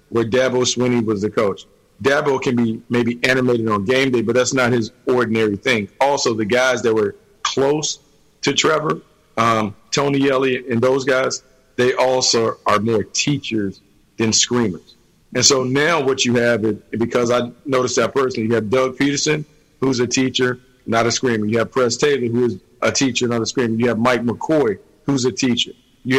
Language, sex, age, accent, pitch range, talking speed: English, male, 50-69, American, 120-140 Hz, 185 wpm